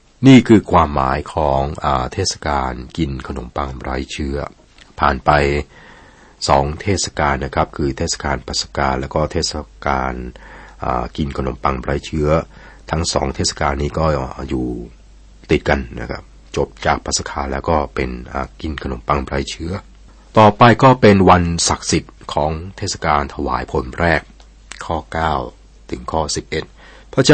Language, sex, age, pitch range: Thai, male, 60-79, 70-85 Hz